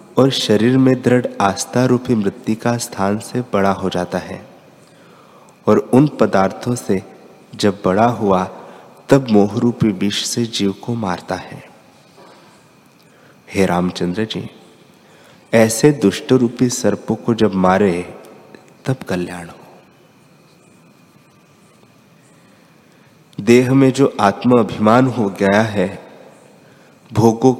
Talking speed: 115 wpm